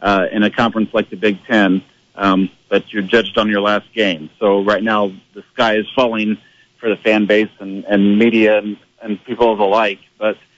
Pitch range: 105-120 Hz